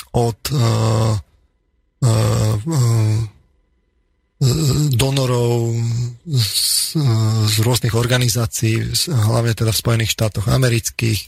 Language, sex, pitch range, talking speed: Slovak, male, 105-120 Hz, 95 wpm